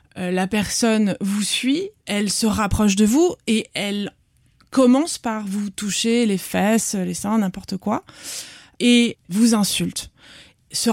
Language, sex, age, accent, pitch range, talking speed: French, female, 20-39, French, 195-235 Hz, 135 wpm